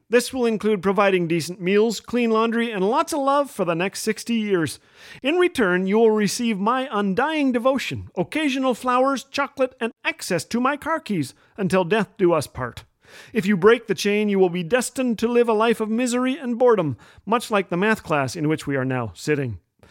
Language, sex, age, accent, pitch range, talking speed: English, male, 40-59, American, 155-230 Hz, 200 wpm